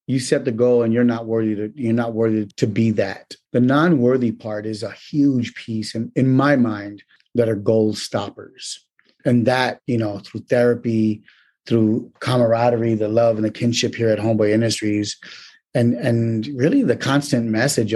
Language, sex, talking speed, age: English, male, 175 wpm, 30-49